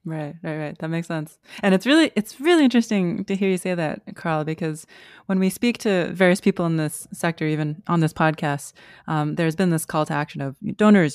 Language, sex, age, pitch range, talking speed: English, female, 20-39, 155-185 Hz, 220 wpm